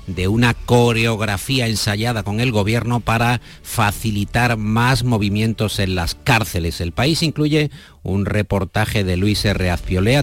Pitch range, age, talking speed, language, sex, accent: 90-120 Hz, 50-69, 135 wpm, Spanish, male, Spanish